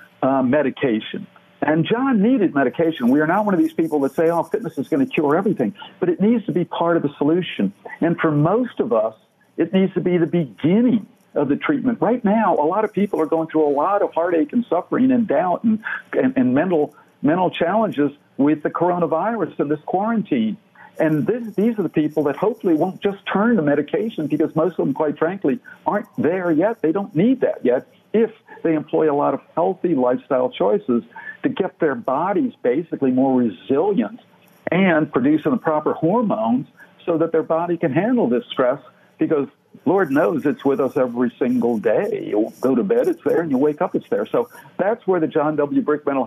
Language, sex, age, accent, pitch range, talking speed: English, male, 60-79, American, 155-225 Hz, 205 wpm